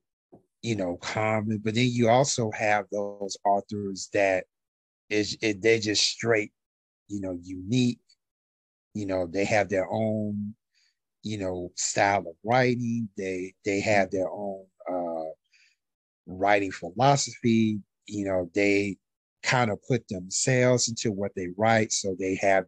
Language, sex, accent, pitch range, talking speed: English, male, American, 95-115 Hz, 140 wpm